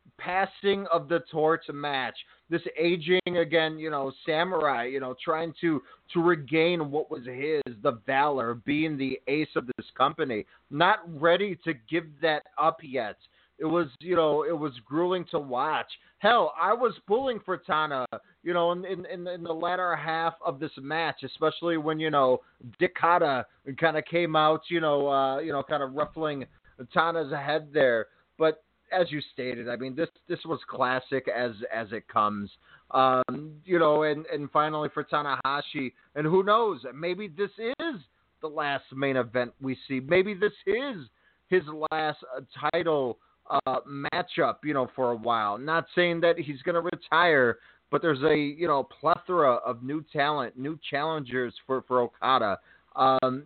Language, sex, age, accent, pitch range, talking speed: English, male, 30-49, American, 135-170 Hz, 170 wpm